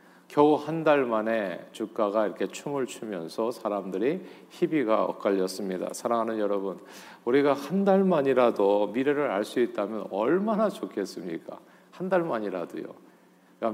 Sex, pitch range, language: male, 105-140 Hz, Korean